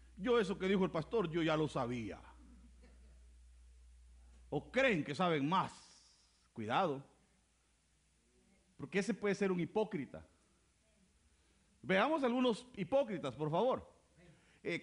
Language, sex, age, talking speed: Spanish, male, 50-69, 115 wpm